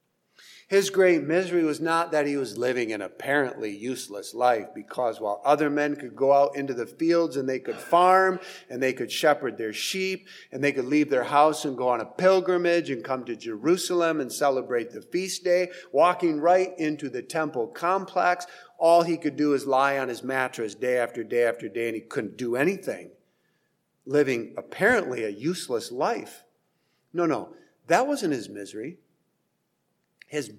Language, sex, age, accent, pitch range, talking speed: English, male, 50-69, American, 130-175 Hz, 175 wpm